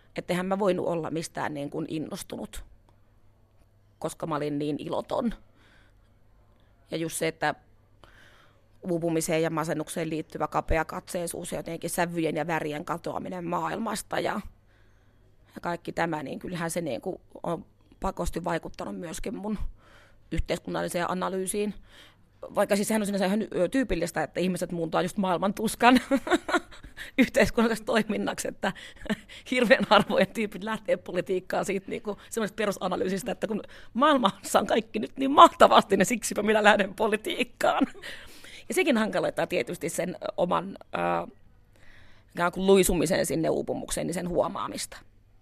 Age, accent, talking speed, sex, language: 30-49, native, 125 wpm, female, Finnish